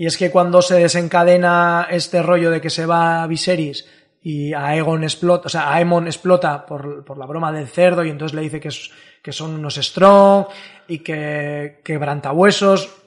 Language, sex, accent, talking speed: Spanish, male, Spanish, 185 wpm